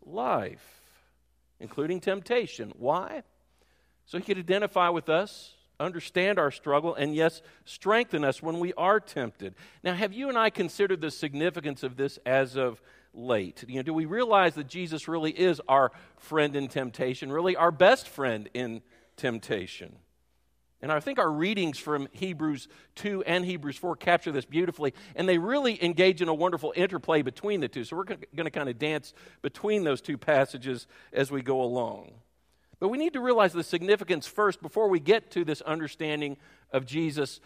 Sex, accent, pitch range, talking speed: male, American, 135-185 Hz, 170 wpm